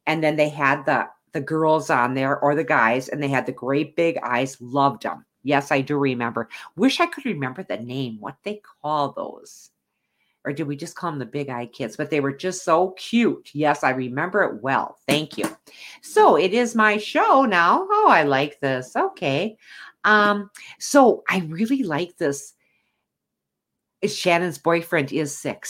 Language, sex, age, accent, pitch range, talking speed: English, female, 50-69, American, 145-210 Hz, 185 wpm